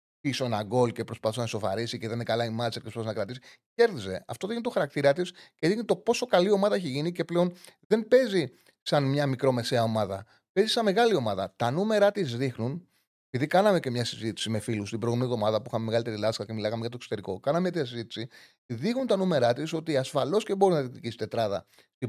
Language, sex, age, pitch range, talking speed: Greek, male, 30-49, 120-180 Hz, 215 wpm